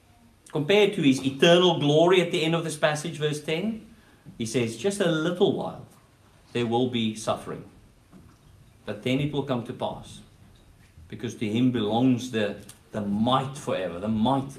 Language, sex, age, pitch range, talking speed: English, male, 50-69, 110-145 Hz, 165 wpm